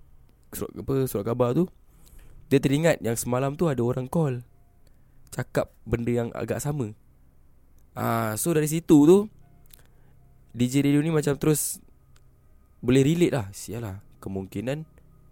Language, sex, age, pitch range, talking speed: Malay, male, 20-39, 95-130 Hz, 130 wpm